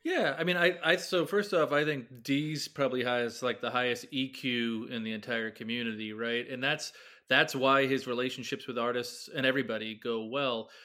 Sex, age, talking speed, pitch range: male, 30-49, 190 wpm, 125-155 Hz